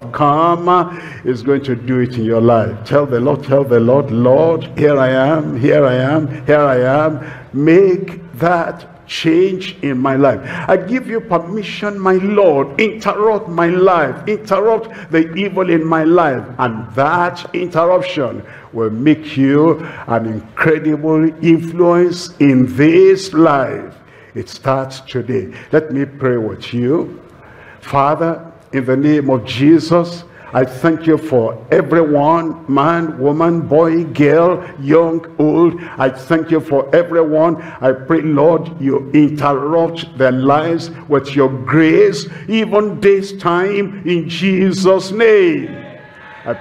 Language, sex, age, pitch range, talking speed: English, male, 50-69, 135-175 Hz, 135 wpm